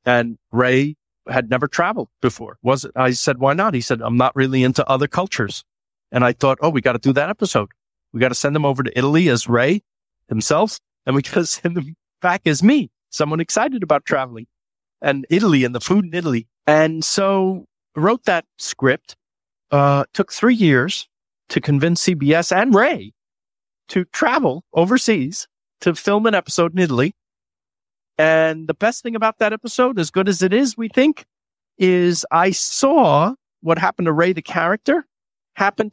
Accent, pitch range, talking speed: American, 130-180 Hz, 175 wpm